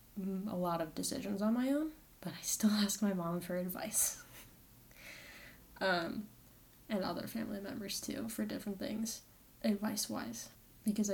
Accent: American